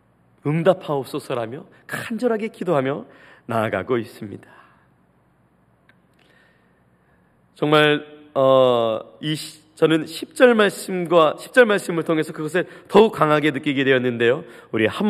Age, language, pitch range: 40-59, Korean, 155-255 Hz